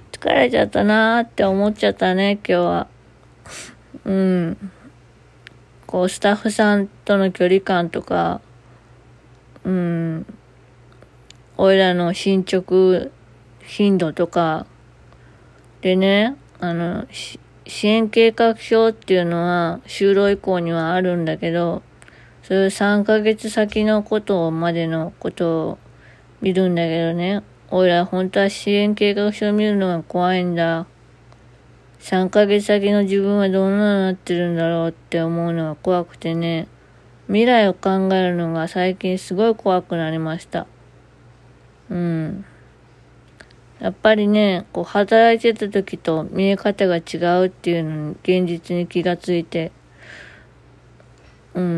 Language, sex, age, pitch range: Japanese, female, 20-39, 170-205 Hz